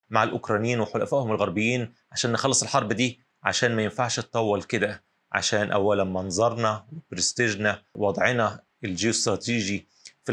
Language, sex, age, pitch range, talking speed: Arabic, male, 30-49, 100-120 Hz, 115 wpm